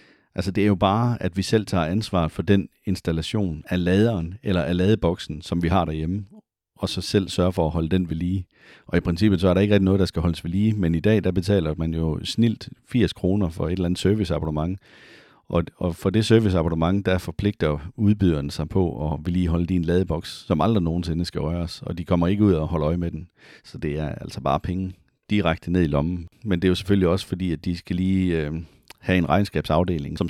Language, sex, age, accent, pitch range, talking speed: Danish, male, 40-59, native, 85-105 Hz, 230 wpm